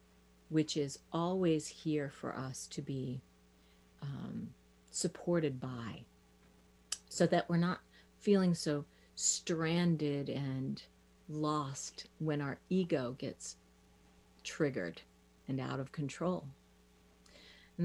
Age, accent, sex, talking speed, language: 40-59, American, female, 100 wpm, English